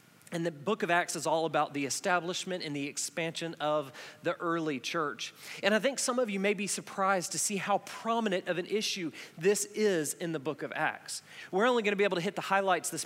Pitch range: 150-195 Hz